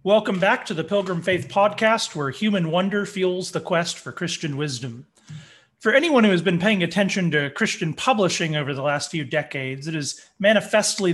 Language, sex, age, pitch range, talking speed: English, male, 30-49, 155-195 Hz, 185 wpm